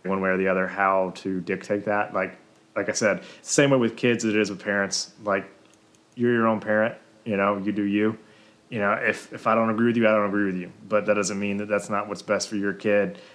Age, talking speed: 20-39, 260 wpm